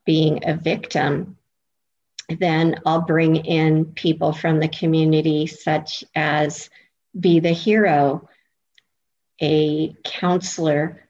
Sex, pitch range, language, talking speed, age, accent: female, 150-165 Hz, English, 95 wpm, 50-69, American